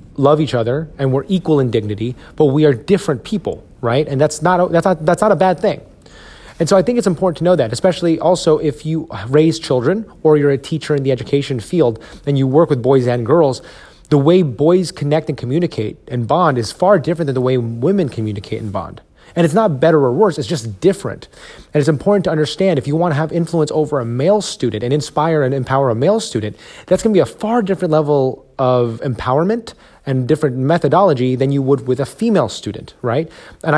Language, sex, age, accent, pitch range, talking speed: English, male, 30-49, American, 130-170 Hz, 225 wpm